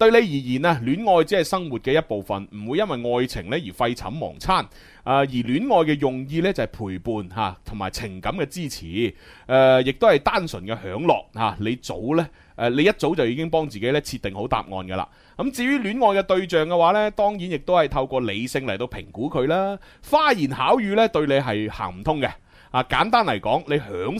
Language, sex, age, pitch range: Chinese, male, 30-49, 110-165 Hz